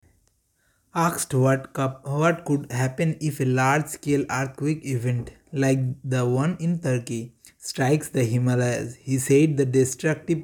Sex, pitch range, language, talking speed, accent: male, 130-145 Hz, English, 125 wpm, Indian